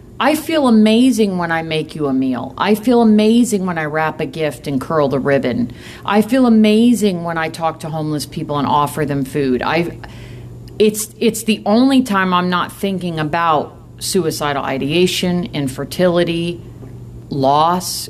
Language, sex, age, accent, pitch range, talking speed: English, female, 50-69, American, 135-180 Hz, 160 wpm